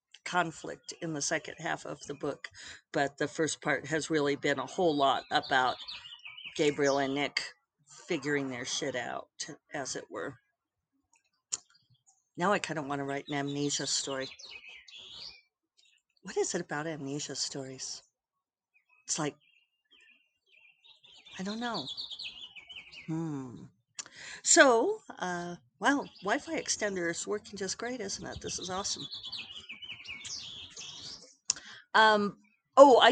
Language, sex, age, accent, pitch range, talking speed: English, female, 50-69, American, 150-205 Hz, 125 wpm